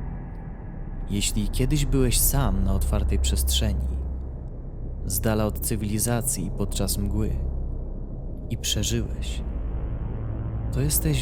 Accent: native